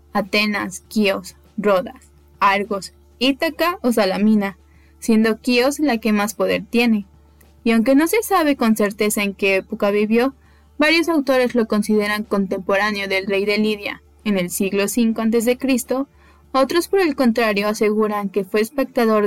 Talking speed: 145 wpm